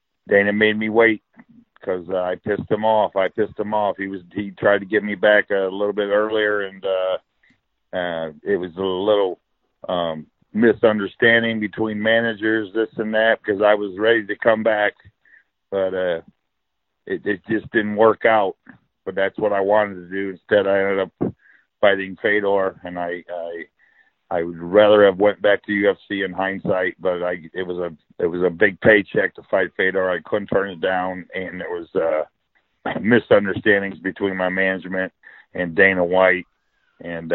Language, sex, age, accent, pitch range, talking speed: English, male, 50-69, American, 90-105 Hz, 180 wpm